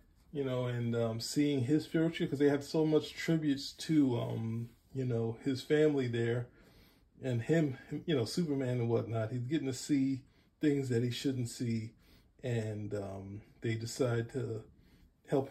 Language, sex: English, male